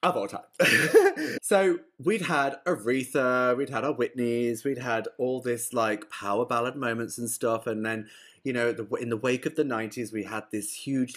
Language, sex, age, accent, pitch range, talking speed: English, male, 20-39, British, 100-125 Hz, 190 wpm